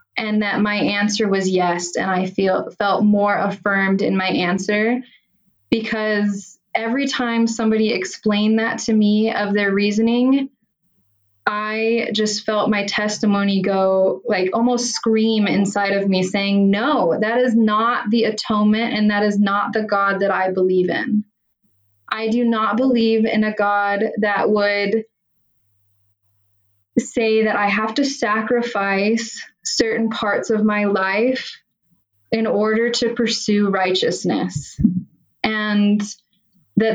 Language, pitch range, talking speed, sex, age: English, 190-220 Hz, 135 wpm, female, 20-39